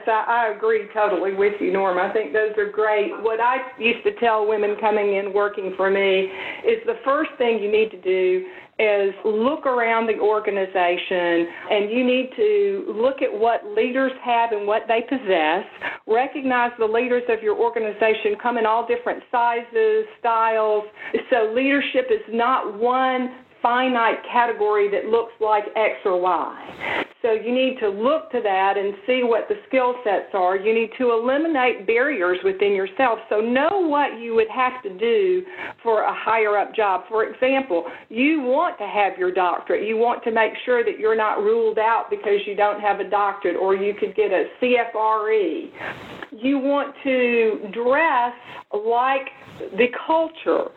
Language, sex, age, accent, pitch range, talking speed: English, female, 50-69, American, 210-270 Hz, 170 wpm